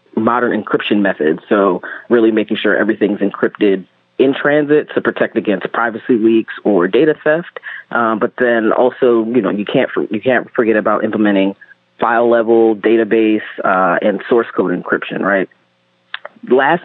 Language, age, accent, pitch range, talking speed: English, 30-49, American, 105-125 Hz, 155 wpm